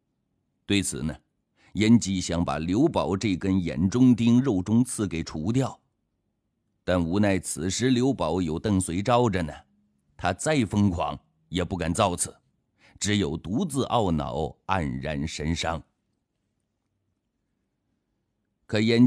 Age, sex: 50-69, male